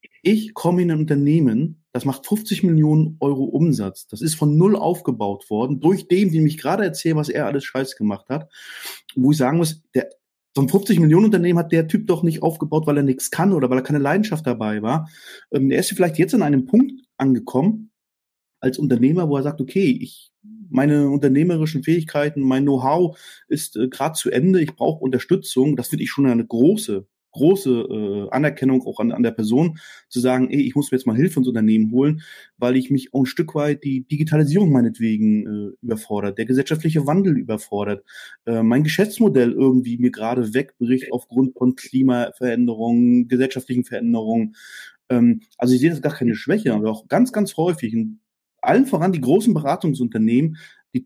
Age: 30-49